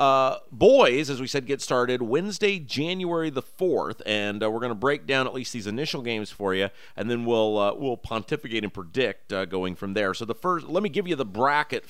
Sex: male